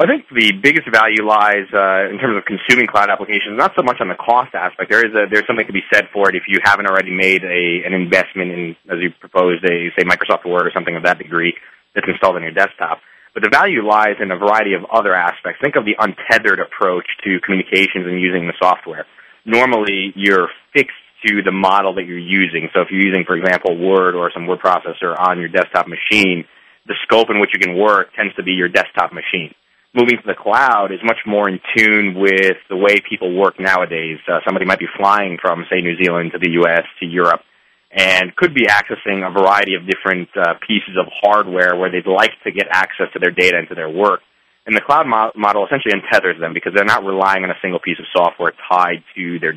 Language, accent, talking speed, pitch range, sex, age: English, American, 230 wpm, 90-100 Hz, male, 30-49